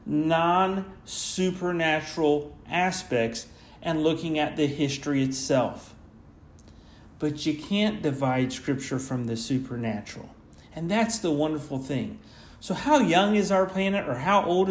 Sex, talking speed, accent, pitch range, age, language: male, 120 wpm, American, 130-180 Hz, 40-59, English